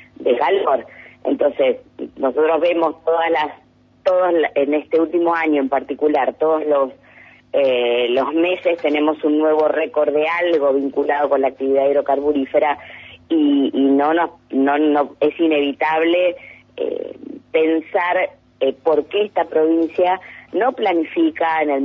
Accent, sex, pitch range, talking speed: Argentinian, female, 140-165 Hz, 135 wpm